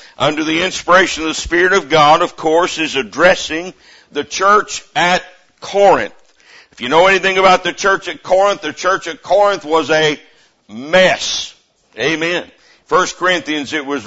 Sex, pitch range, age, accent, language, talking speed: male, 160-205 Hz, 60-79, American, English, 160 wpm